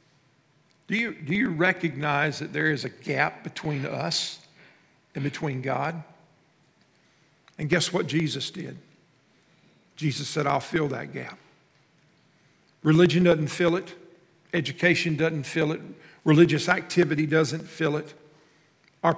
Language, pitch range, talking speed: English, 145-170 Hz, 120 wpm